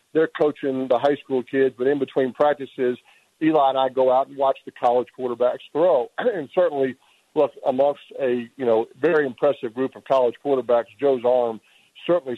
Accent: American